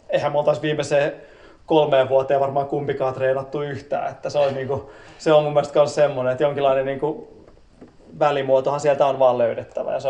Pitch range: 125-150 Hz